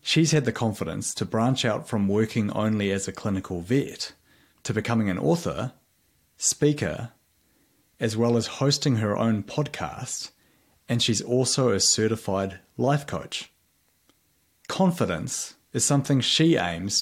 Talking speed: 135 wpm